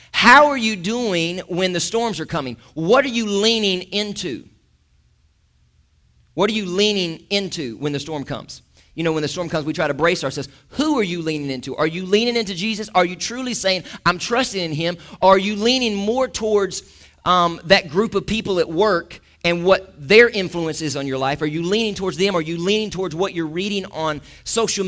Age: 40-59